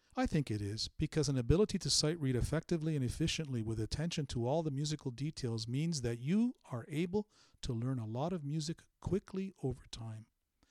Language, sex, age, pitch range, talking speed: English, male, 50-69, 120-160 Hz, 190 wpm